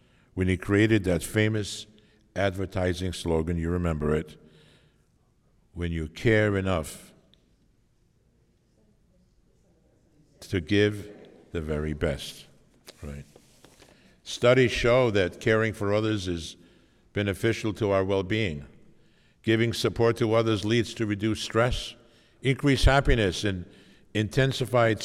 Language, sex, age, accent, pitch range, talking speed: English, male, 60-79, American, 90-115 Hz, 105 wpm